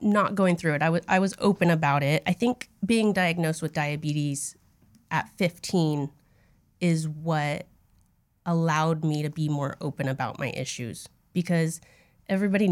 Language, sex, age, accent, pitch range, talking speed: English, female, 30-49, American, 145-175 Hz, 150 wpm